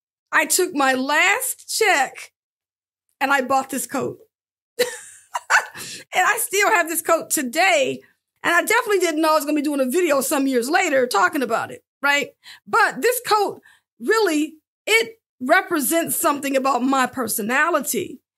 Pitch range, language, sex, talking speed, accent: 280-390 Hz, English, female, 155 wpm, American